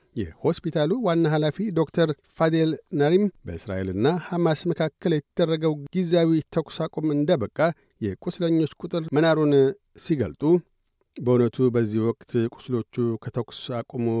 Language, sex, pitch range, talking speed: Amharic, male, 115-160 Hz, 95 wpm